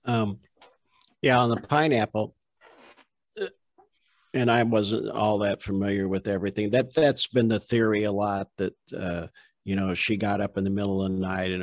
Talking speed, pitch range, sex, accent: 175 wpm, 95-110 Hz, male, American